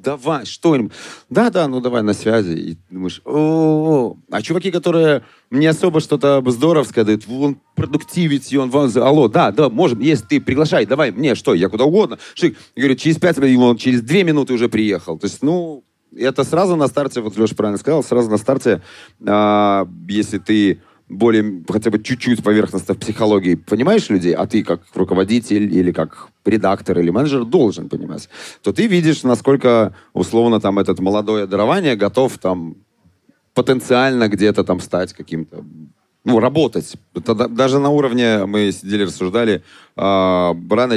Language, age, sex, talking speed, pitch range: Russian, 30-49, male, 160 wpm, 100-135 Hz